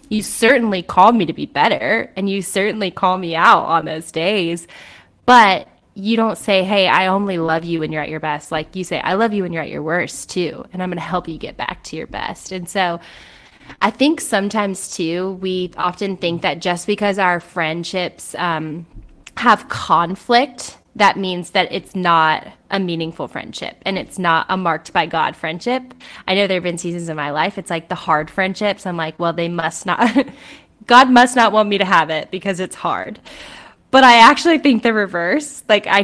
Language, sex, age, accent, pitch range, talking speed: English, female, 20-39, American, 170-215 Hz, 210 wpm